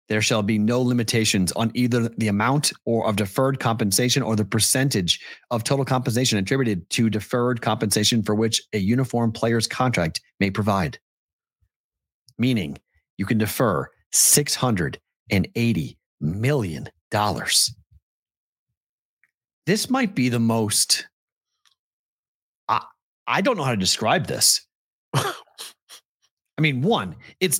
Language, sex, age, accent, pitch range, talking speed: English, male, 40-59, American, 110-140 Hz, 115 wpm